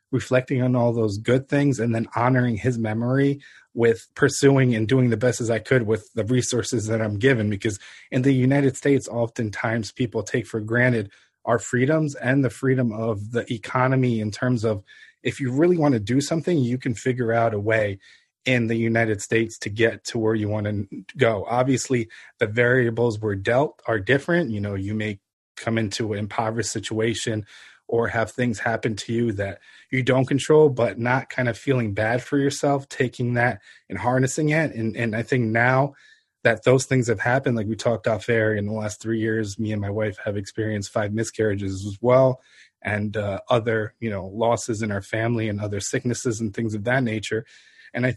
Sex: male